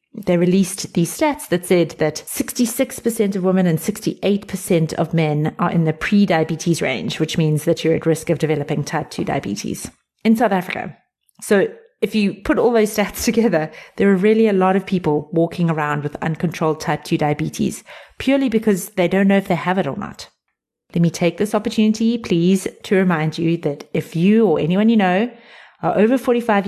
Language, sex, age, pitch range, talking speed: English, female, 30-49, 165-215 Hz, 190 wpm